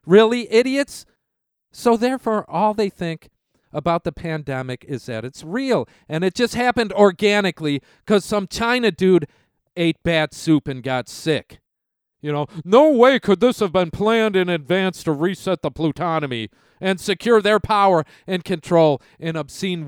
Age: 40-59